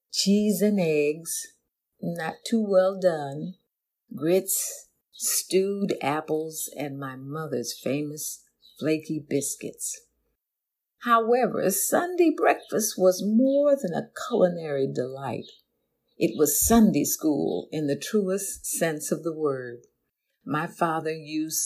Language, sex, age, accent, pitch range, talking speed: English, female, 50-69, American, 145-195 Hz, 110 wpm